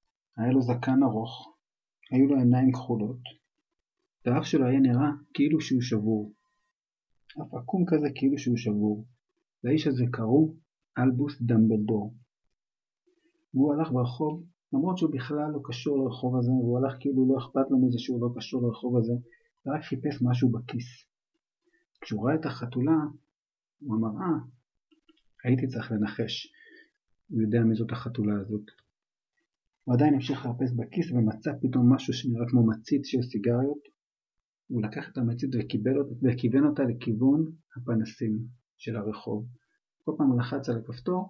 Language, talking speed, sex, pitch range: Hebrew, 115 wpm, male, 120-145 Hz